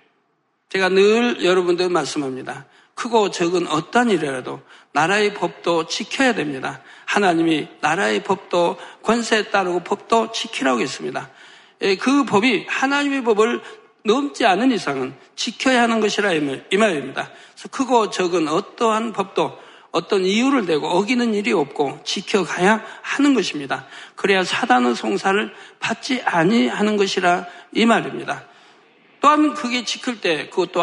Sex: male